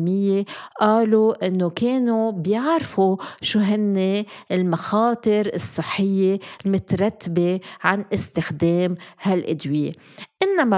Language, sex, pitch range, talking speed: Arabic, female, 180-225 Hz, 70 wpm